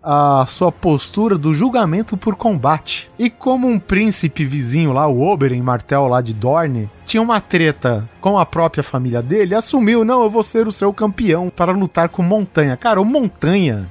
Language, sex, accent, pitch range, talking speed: Portuguese, male, Brazilian, 150-215 Hz, 185 wpm